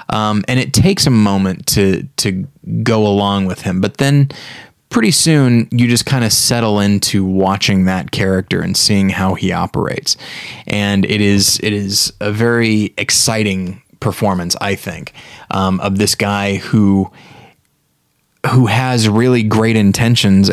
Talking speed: 150 wpm